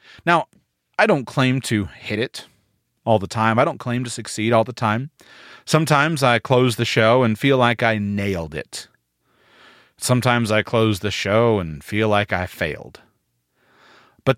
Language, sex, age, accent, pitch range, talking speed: English, male, 30-49, American, 105-145 Hz, 165 wpm